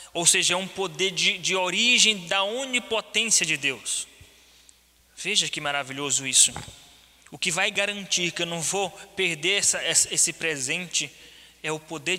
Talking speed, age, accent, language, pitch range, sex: 150 wpm, 20-39, Brazilian, Portuguese, 170-230 Hz, male